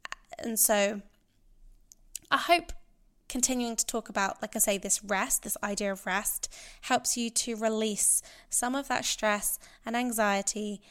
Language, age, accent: English, 10-29, British